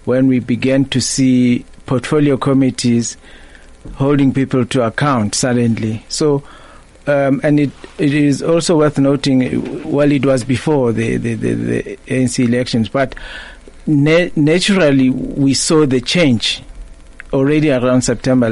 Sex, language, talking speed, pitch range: male, English, 135 wpm, 125-150 Hz